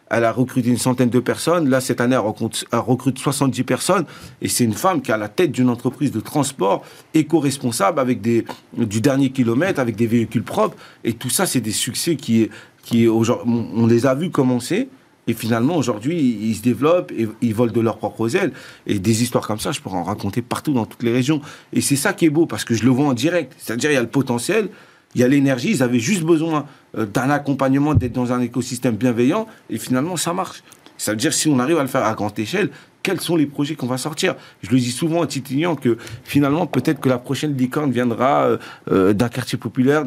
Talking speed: 230 wpm